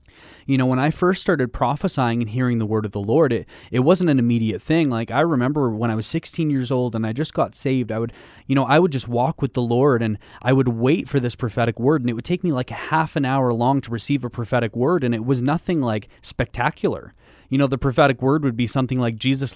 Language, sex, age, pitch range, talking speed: English, male, 20-39, 115-145 Hz, 260 wpm